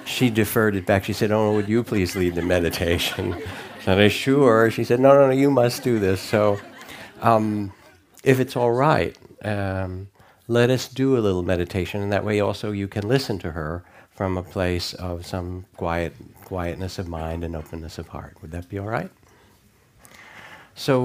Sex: male